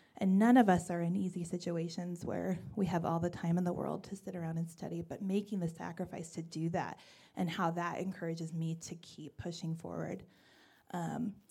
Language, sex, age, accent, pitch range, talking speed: English, female, 20-39, American, 170-205 Hz, 205 wpm